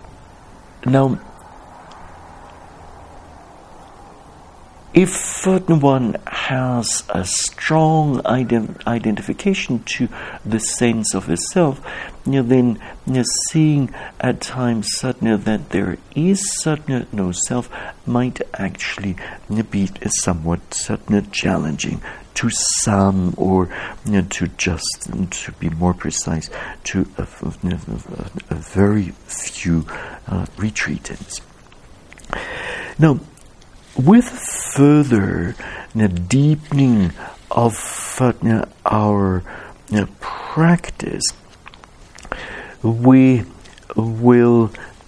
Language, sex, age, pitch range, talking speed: English, male, 60-79, 95-130 Hz, 90 wpm